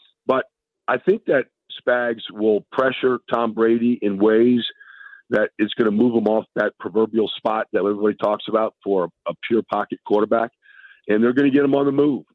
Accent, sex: American, male